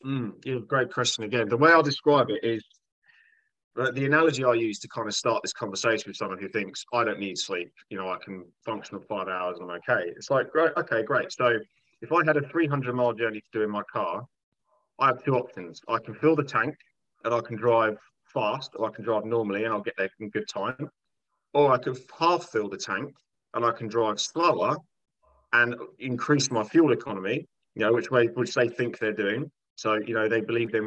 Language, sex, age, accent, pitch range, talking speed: English, male, 30-49, British, 105-125 Hz, 230 wpm